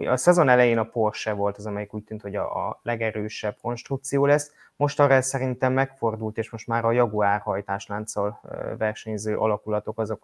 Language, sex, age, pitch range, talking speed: Hungarian, male, 20-39, 105-125 Hz, 160 wpm